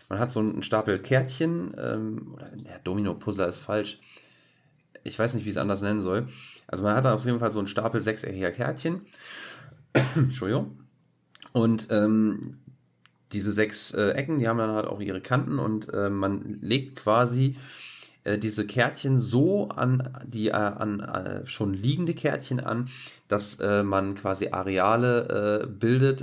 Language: German